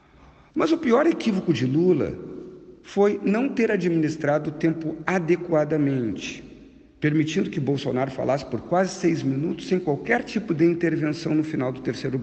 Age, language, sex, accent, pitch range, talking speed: 50-69, Portuguese, male, Brazilian, 125-165 Hz, 145 wpm